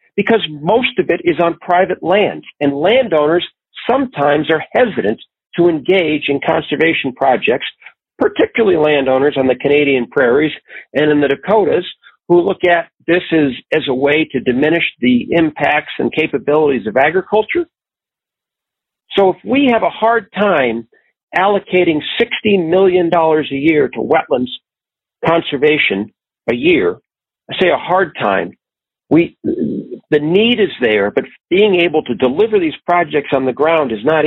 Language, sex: English, male